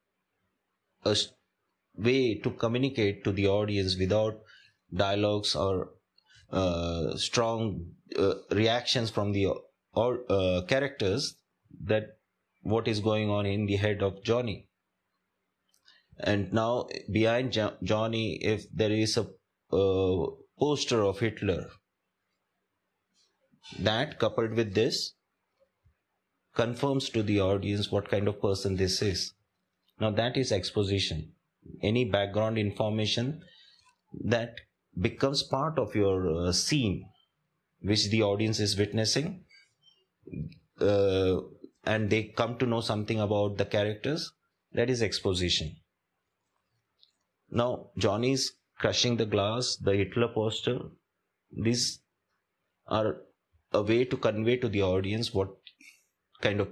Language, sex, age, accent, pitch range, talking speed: English, male, 30-49, Indian, 100-120 Hz, 110 wpm